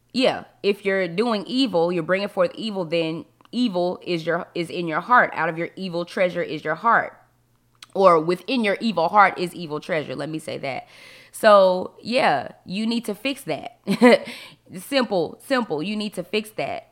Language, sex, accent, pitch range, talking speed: English, female, American, 165-215 Hz, 180 wpm